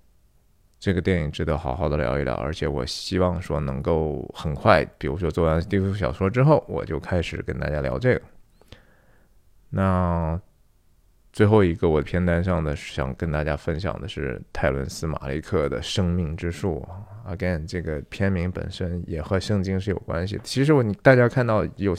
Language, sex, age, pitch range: Chinese, male, 20-39, 80-105 Hz